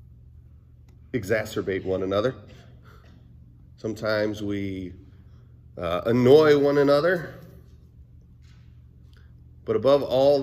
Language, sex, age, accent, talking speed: English, male, 40-59, American, 70 wpm